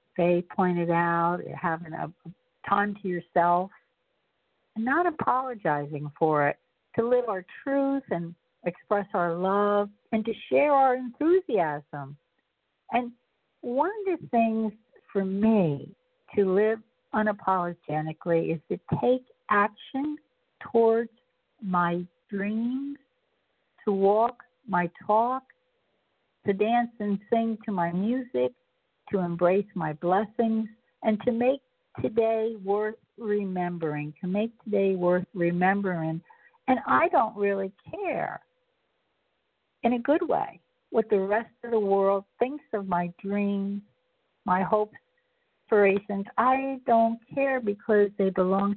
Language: English